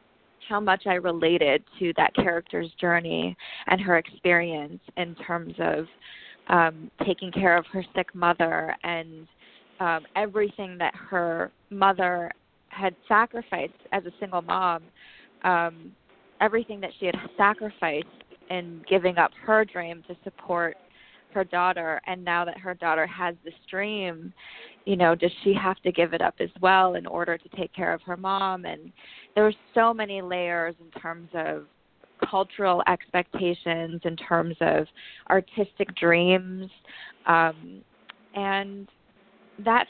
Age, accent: 20-39, American